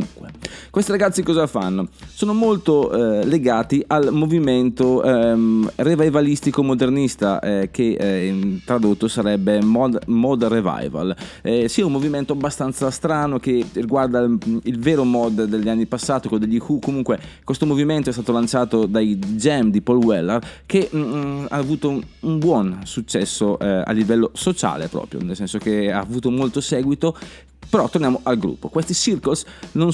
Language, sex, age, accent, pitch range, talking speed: Italian, male, 20-39, native, 110-150 Hz, 155 wpm